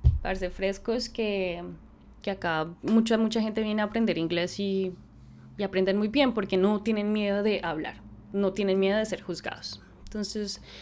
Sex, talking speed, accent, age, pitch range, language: female, 165 wpm, Colombian, 10-29, 195-235 Hz, Spanish